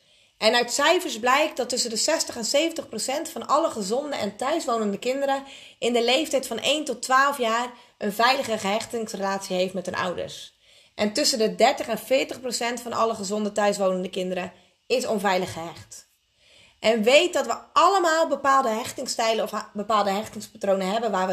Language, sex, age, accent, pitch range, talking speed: Dutch, female, 30-49, Dutch, 215-275 Hz, 165 wpm